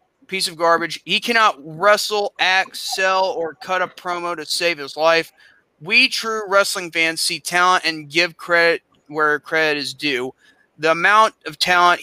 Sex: male